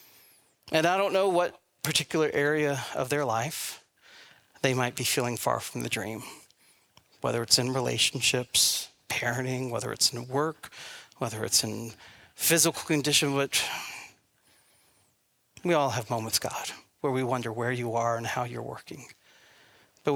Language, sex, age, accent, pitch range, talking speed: English, male, 40-59, American, 120-140 Hz, 145 wpm